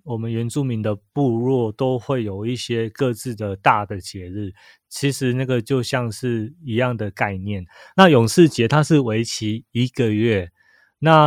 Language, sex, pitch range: Chinese, male, 105-140 Hz